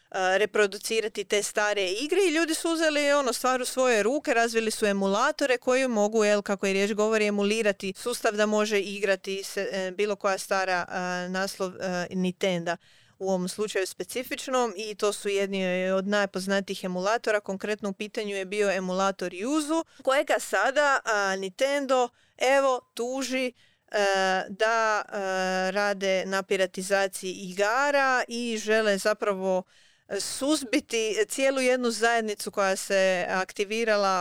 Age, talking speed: 30-49, 120 wpm